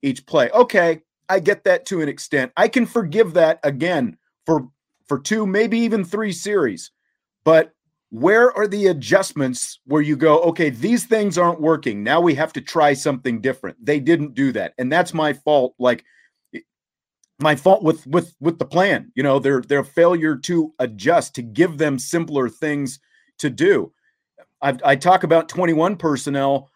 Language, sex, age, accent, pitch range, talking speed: English, male, 40-59, American, 130-175 Hz, 175 wpm